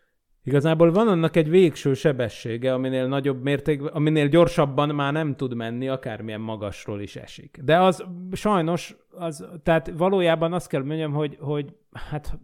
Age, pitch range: 30-49, 125-160 Hz